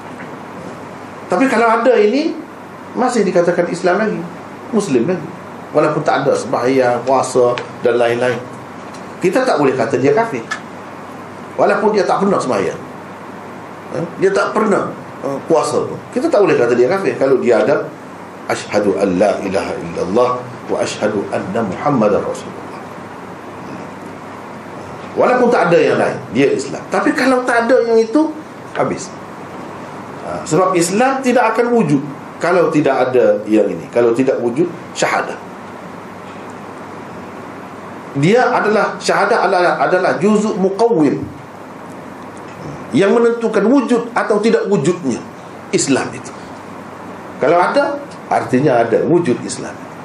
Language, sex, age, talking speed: Malay, male, 50-69, 120 wpm